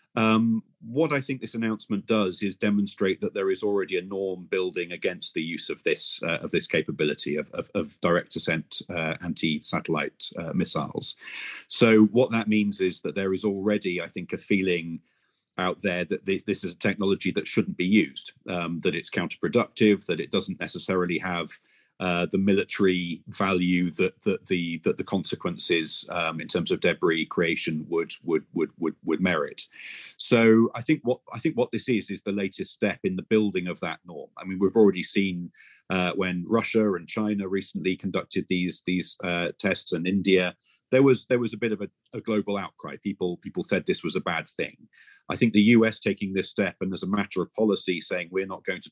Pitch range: 90-110 Hz